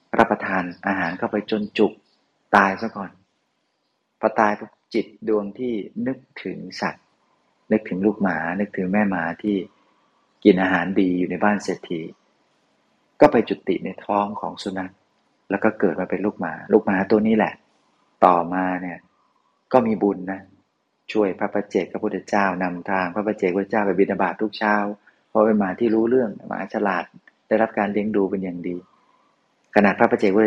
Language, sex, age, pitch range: Thai, male, 30-49, 95-110 Hz